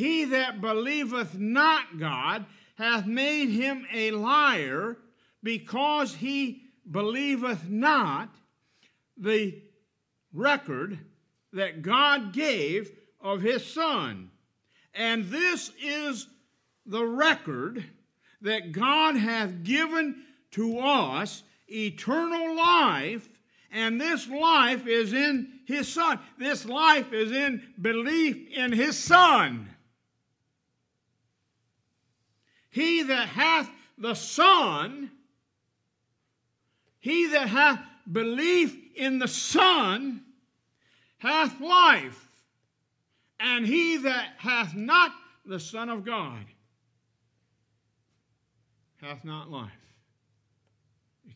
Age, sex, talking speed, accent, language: 60-79, male, 90 wpm, American, English